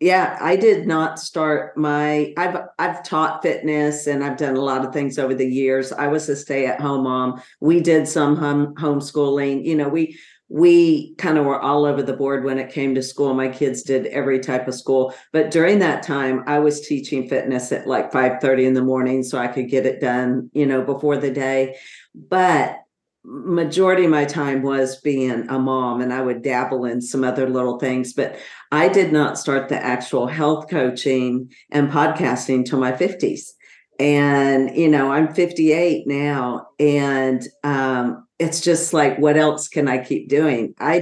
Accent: American